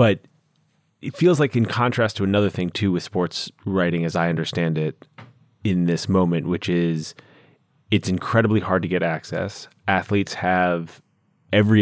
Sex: male